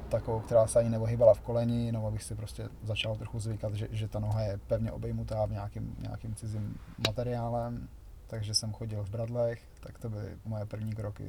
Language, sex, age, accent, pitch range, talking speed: Czech, male, 20-39, native, 105-115 Hz, 200 wpm